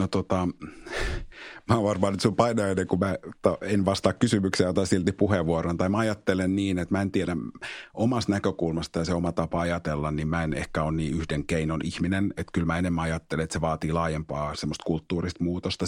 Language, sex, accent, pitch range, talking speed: Finnish, male, native, 80-95 Hz, 195 wpm